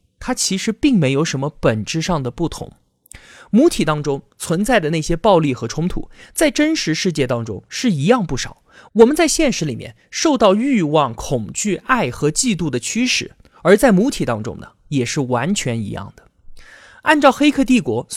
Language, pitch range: Chinese, 140-235 Hz